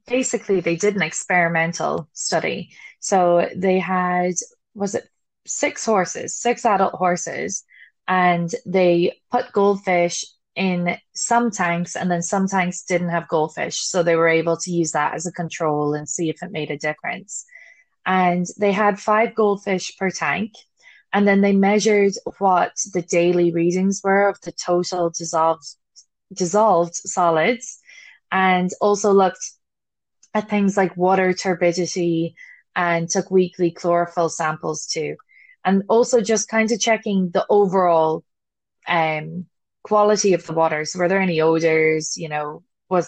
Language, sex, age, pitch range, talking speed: English, female, 20-39, 170-200 Hz, 145 wpm